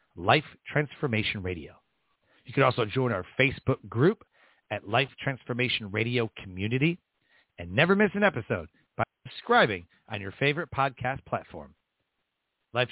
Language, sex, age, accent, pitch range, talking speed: English, male, 40-59, American, 120-170 Hz, 130 wpm